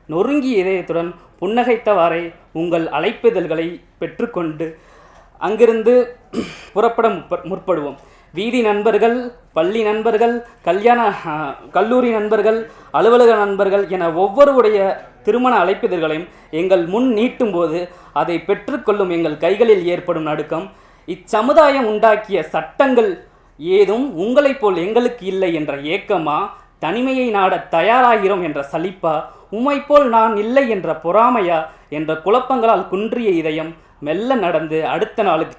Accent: native